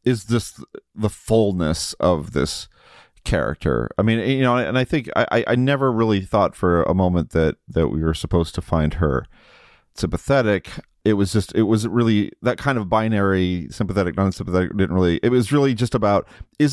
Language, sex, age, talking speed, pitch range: English, male, 40-59, 185 wpm, 90-115 Hz